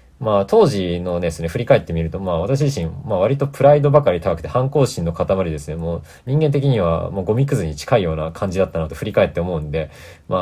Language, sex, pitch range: Japanese, male, 80-135 Hz